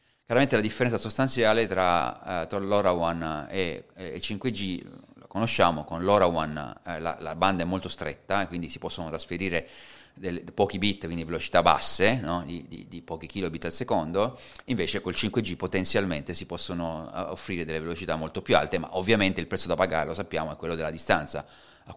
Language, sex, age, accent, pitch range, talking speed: Italian, male, 30-49, native, 85-95 Hz, 170 wpm